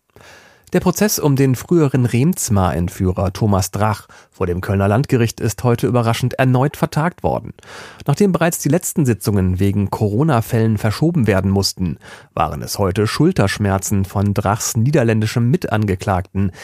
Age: 40-59